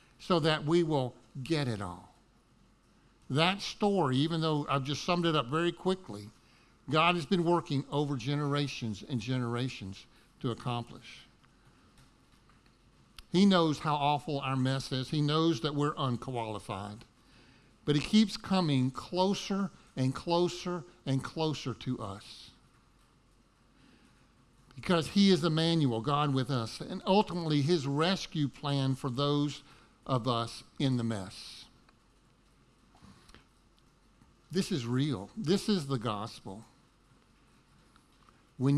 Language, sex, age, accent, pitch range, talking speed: English, male, 50-69, American, 120-160 Hz, 120 wpm